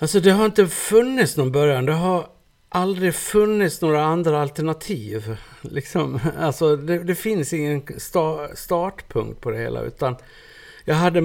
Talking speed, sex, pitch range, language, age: 150 wpm, male, 110-155 Hz, Swedish, 60-79